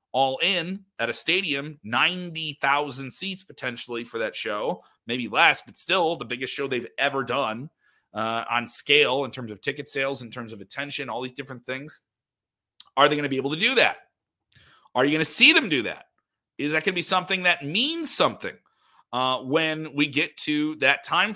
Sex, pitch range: male, 120-160 Hz